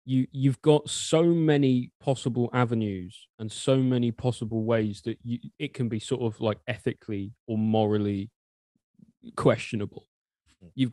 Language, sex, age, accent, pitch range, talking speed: English, male, 20-39, British, 110-130 Hz, 135 wpm